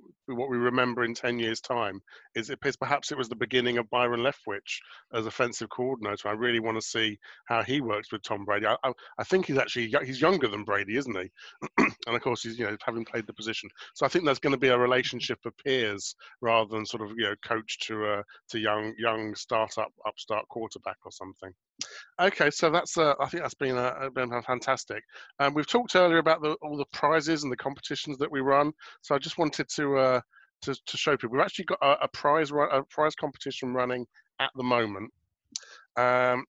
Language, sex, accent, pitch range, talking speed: English, male, British, 120-150 Hz, 225 wpm